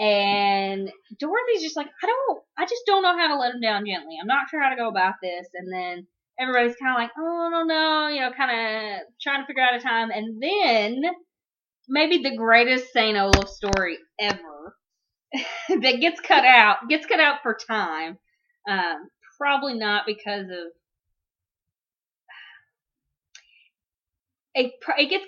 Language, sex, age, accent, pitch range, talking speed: English, female, 20-39, American, 205-295 Hz, 165 wpm